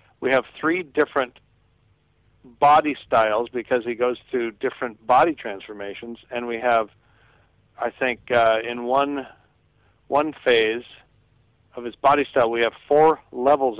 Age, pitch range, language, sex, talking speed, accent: 50-69, 115-135 Hz, English, male, 135 wpm, American